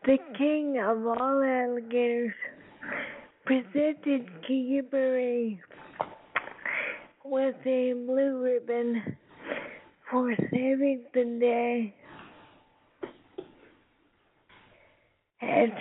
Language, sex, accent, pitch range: English, female, American, 240-275 Hz